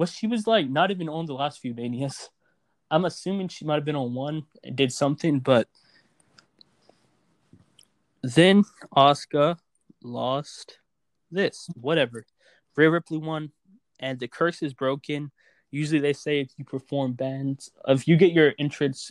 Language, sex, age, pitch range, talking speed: English, male, 20-39, 130-160 Hz, 150 wpm